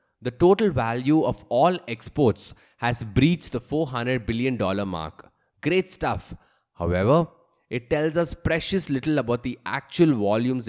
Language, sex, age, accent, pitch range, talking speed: English, male, 20-39, Indian, 105-150 Hz, 135 wpm